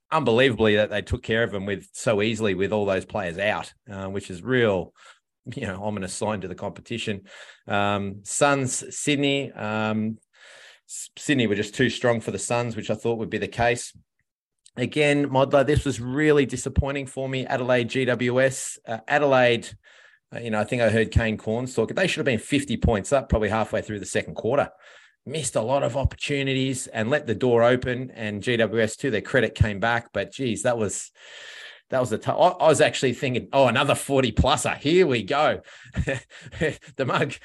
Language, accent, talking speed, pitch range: English, Australian, 190 wpm, 100-130 Hz